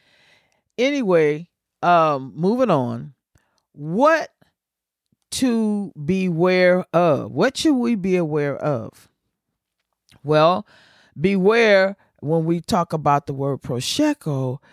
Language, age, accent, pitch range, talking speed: English, 40-59, American, 140-205 Hz, 95 wpm